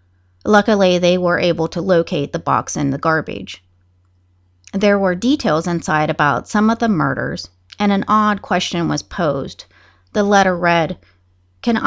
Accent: American